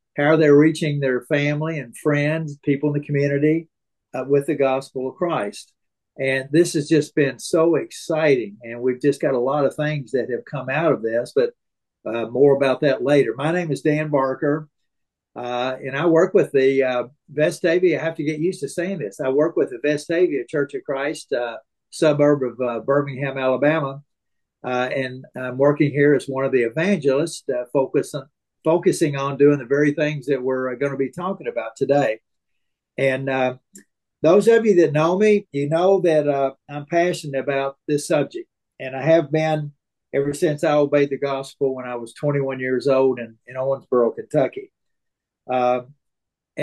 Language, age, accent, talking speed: English, 50-69, American, 185 wpm